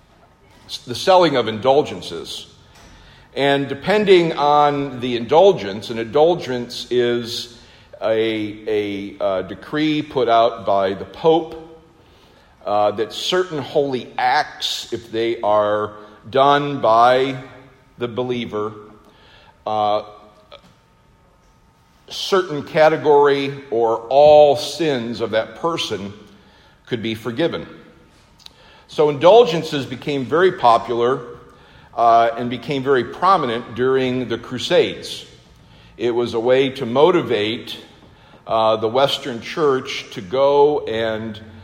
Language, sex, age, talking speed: English, male, 50-69, 100 wpm